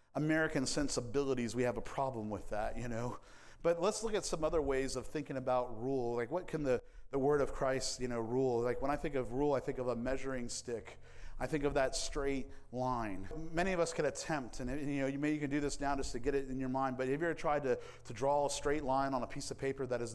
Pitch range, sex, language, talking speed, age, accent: 125-170 Hz, male, English, 270 wpm, 40-59, American